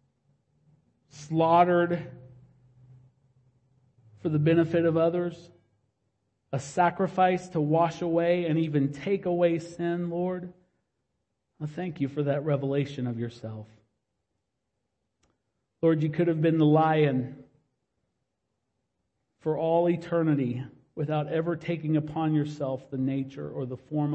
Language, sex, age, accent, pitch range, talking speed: English, male, 40-59, American, 120-155 Hz, 110 wpm